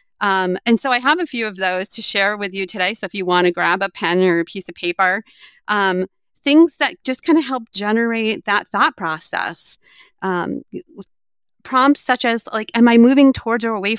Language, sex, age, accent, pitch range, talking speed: English, female, 30-49, American, 195-260 Hz, 210 wpm